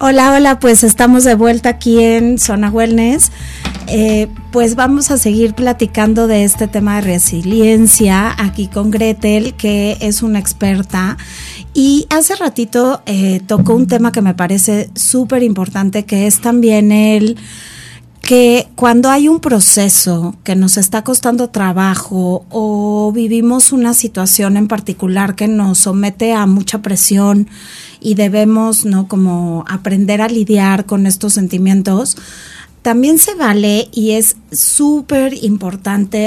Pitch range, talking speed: 195-235 Hz, 135 wpm